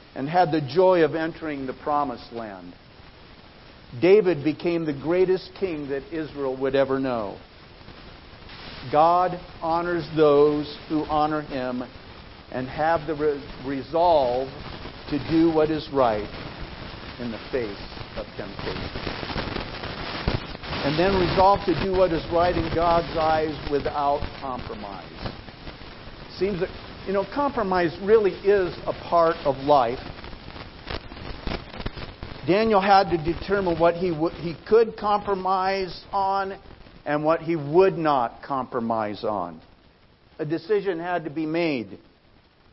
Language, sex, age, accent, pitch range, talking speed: English, male, 50-69, American, 135-180 Hz, 125 wpm